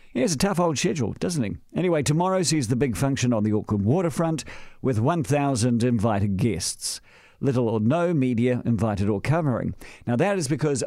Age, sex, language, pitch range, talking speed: 50-69, male, English, 110-155 Hz, 180 wpm